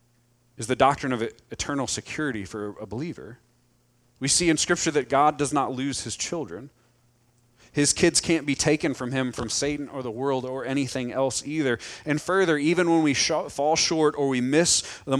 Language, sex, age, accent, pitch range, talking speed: English, male, 30-49, American, 120-160 Hz, 185 wpm